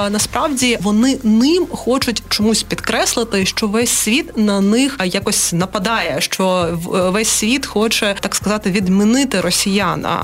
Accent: native